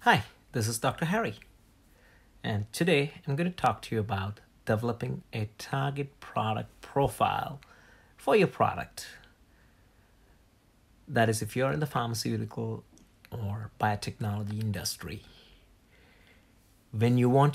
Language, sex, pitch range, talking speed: English, male, 100-130 Hz, 120 wpm